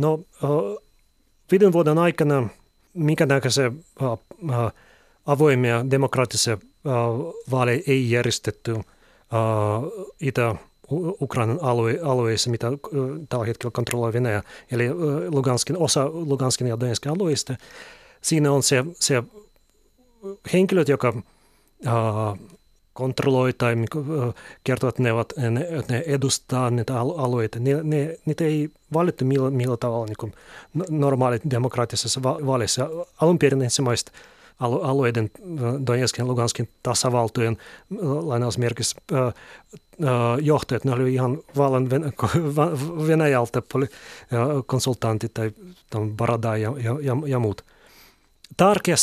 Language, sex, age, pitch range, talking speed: Finnish, male, 30-49, 120-150 Hz, 100 wpm